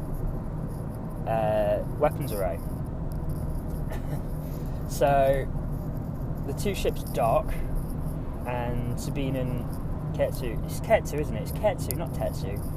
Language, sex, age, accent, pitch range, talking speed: English, male, 20-39, British, 120-150 Hz, 95 wpm